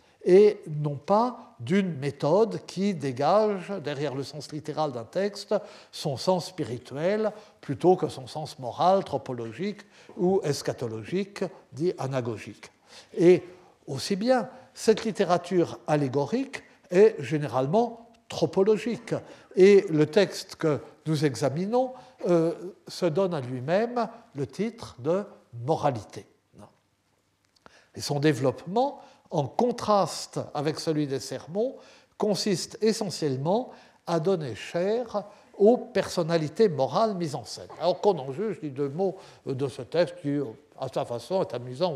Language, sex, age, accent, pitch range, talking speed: French, male, 60-79, French, 140-205 Hz, 125 wpm